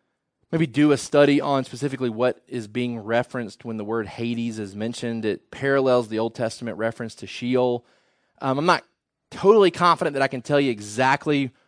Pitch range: 120-160 Hz